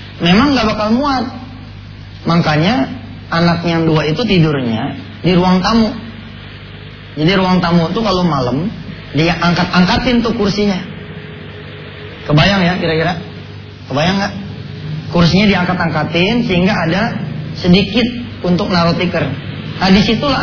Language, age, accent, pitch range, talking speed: English, 30-49, Indonesian, 145-185 Hz, 110 wpm